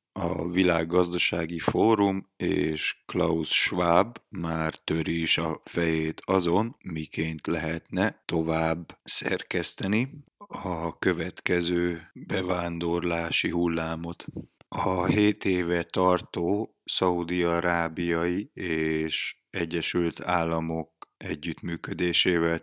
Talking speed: 80 wpm